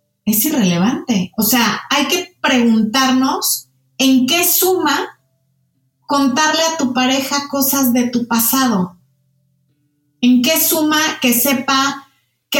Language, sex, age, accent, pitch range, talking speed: Spanish, female, 30-49, Mexican, 210-270 Hz, 115 wpm